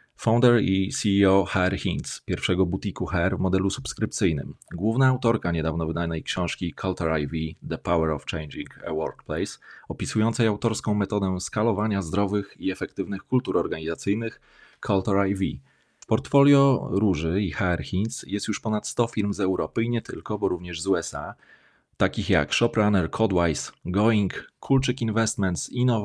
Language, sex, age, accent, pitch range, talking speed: Polish, male, 30-49, native, 90-115 Hz, 145 wpm